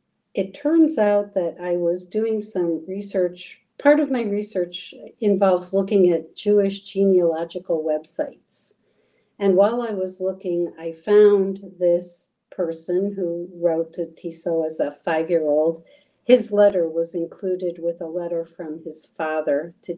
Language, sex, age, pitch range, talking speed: Slovak, female, 60-79, 170-200 Hz, 140 wpm